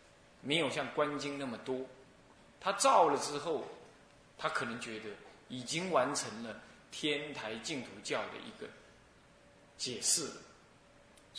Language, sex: Chinese, male